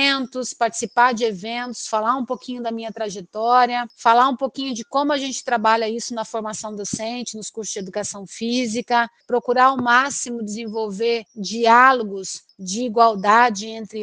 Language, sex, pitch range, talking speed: Portuguese, female, 215-255 Hz, 145 wpm